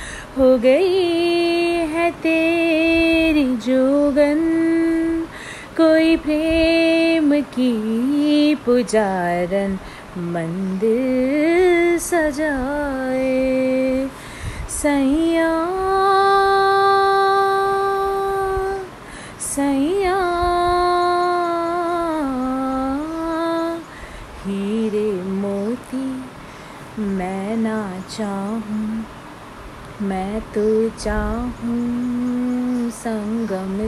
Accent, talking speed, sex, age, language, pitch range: native, 40 wpm, female, 20-39, Hindi, 220-310 Hz